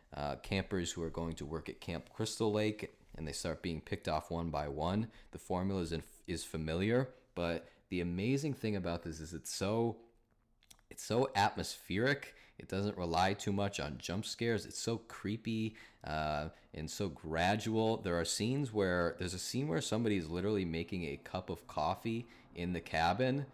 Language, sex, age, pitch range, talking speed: English, male, 20-39, 85-110 Hz, 180 wpm